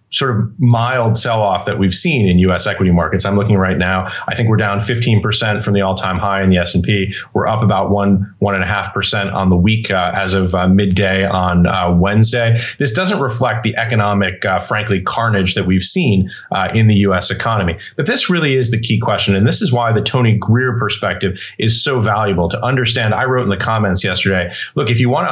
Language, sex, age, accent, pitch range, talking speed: English, male, 30-49, American, 95-115 Hz, 225 wpm